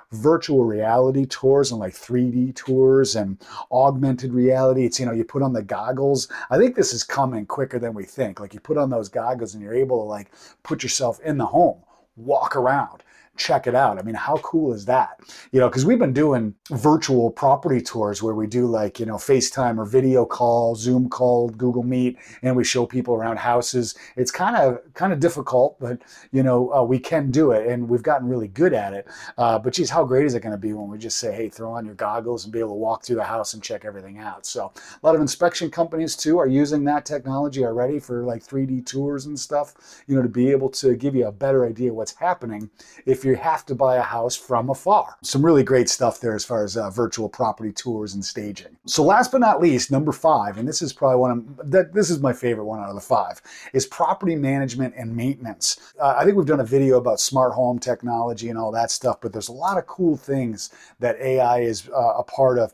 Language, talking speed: English, 235 wpm